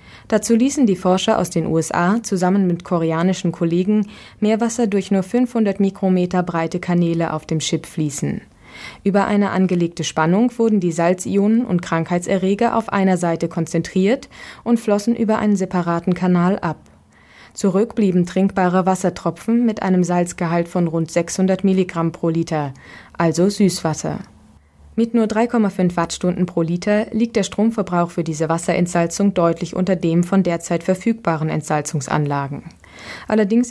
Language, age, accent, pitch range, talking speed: German, 20-39, German, 170-205 Hz, 135 wpm